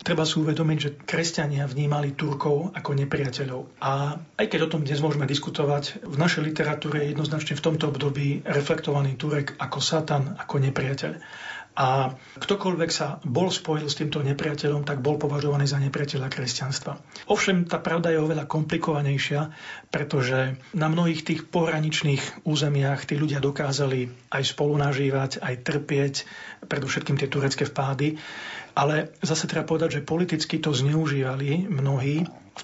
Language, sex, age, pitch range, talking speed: Slovak, male, 40-59, 140-160 Hz, 140 wpm